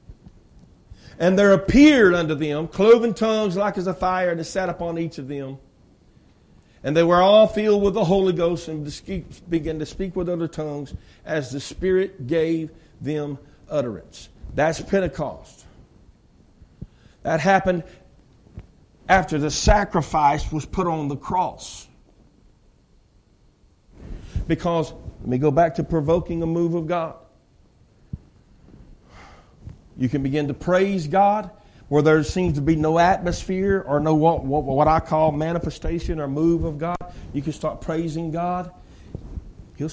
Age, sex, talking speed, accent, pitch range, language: 50-69, male, 140 wpm, American, 130-170 Hz, English